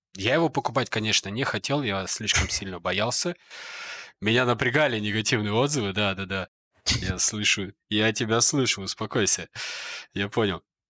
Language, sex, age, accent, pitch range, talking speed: Russian, male, 20-39, native, 95-130 Hz, 125 wpm